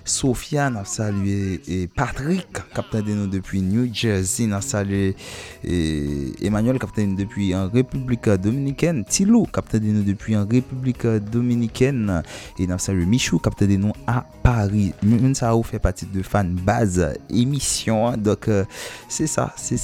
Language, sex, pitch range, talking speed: French, male, 90-110 Hz, 160 wpm